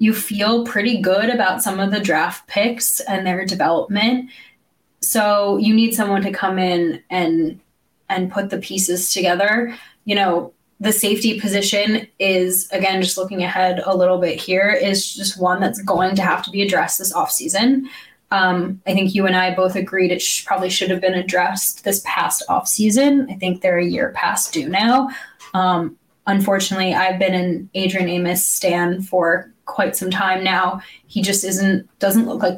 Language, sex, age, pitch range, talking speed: English, female, 10-29, 185-220 Hz, 180 wpm